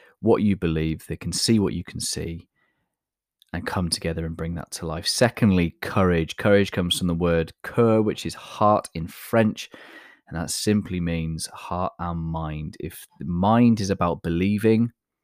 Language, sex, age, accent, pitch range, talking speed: English, male, 20-39, British, 85-100 Hz, 175 wpm